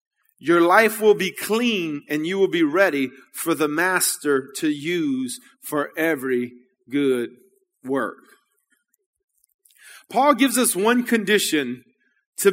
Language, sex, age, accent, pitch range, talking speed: English, male, 30-49, American, 180-250 Hz, 120 wpm